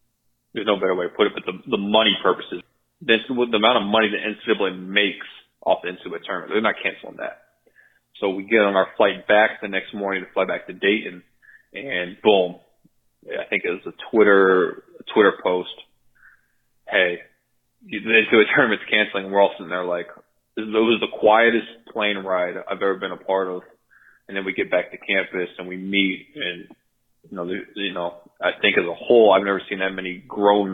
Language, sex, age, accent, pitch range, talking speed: English, male, 20-39, American, 90-100 Hz, 205 wpm